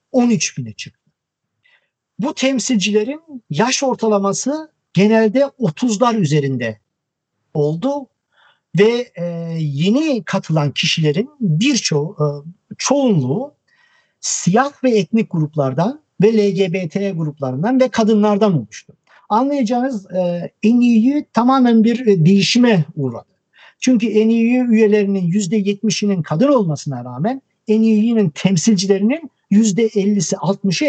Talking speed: 90 wpm